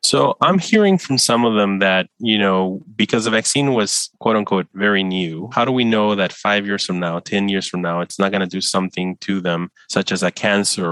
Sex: male